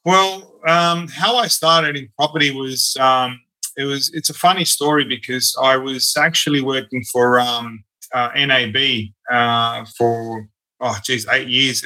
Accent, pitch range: Australian, 120-145 Hz